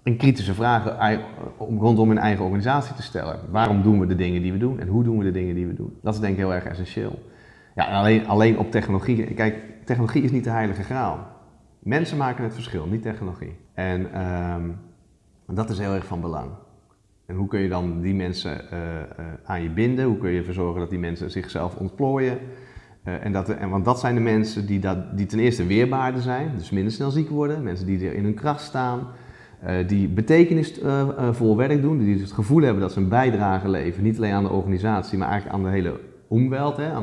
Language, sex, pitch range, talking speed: Dutch, male, 95-125 Hz, 220 wpm